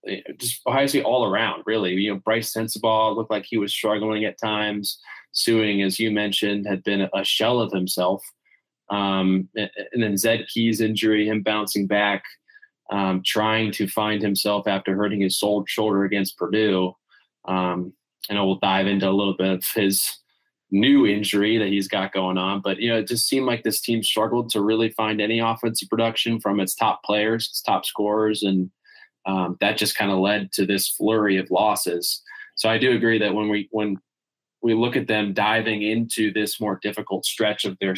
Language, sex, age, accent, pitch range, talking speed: English, male, 20-39, American, 95-110 Hz, 190 wpm